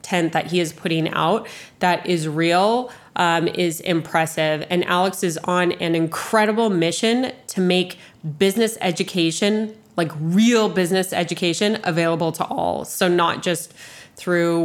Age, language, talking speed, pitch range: 20-39, English, 135 wpm, 170-205 Hz